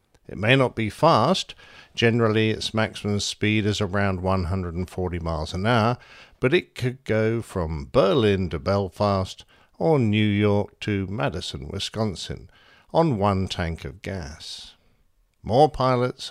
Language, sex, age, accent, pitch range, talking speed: English, male, 50-69, British, 95-120 Hz, 130 wpm